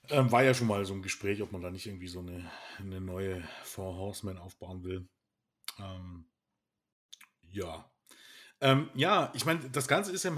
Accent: German